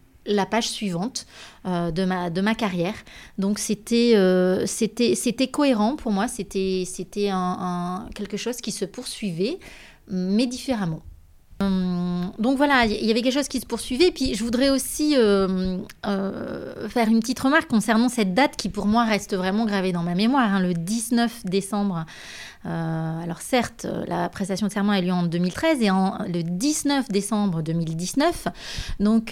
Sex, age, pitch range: female, 30-49, 185-230 Hz